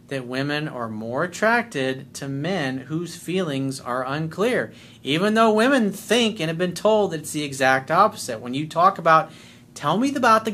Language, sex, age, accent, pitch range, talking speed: English, male, 30-49, American, 130-180 Hz, 180 wpm